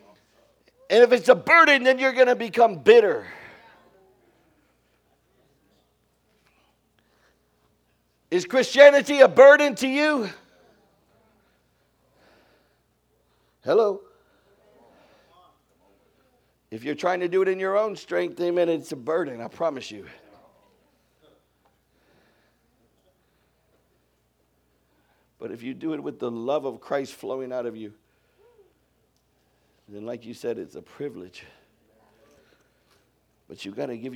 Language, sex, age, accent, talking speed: English, male, 60-79, American, 105 wpm